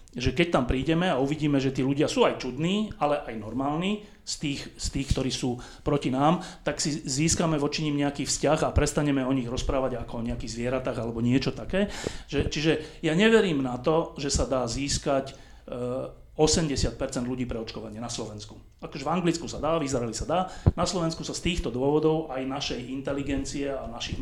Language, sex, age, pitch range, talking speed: Slovak, male, 30-49, 125-160 Hz, 190 wpm